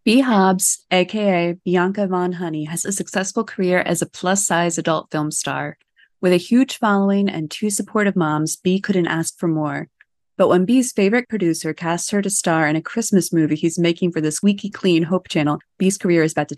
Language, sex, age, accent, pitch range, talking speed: English, female, 20-39, American, 160-195 Hz, 200 wpm